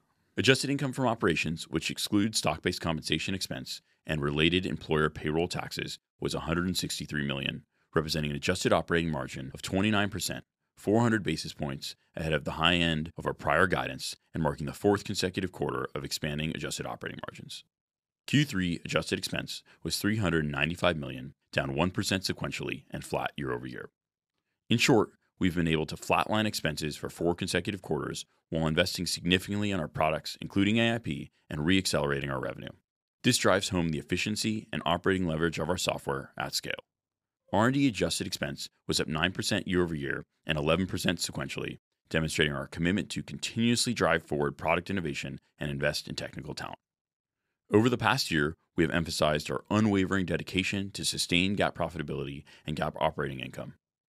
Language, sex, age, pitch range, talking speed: English, male, 30-49, 80-100 Hz, 155 wpm